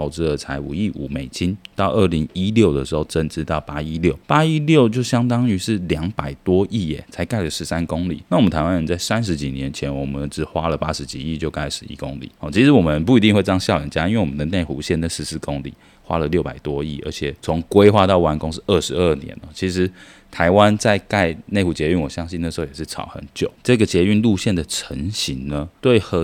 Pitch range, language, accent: 75-100 Hz, Chinese, native